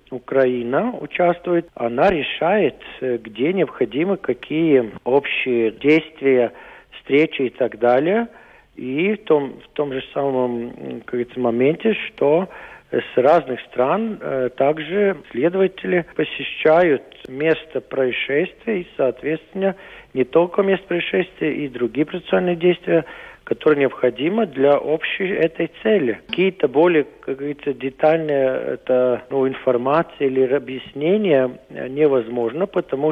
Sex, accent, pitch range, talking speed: male, native, 130-170 Hz, 105 wpm